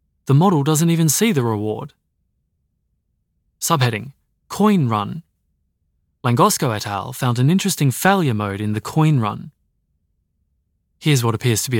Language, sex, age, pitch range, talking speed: English, male, 20-39, 105-145 Hz, 135 wpm